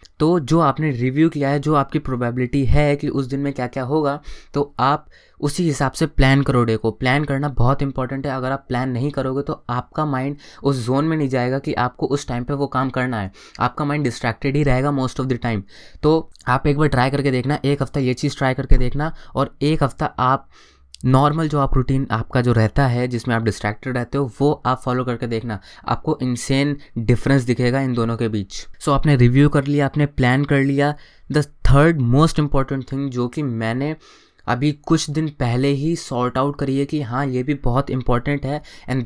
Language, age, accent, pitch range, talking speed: Hindi, 20-39, native, 125-145 Hz, 220 wpm